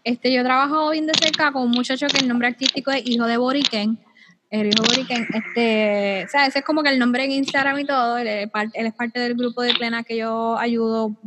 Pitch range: 230-275 Hz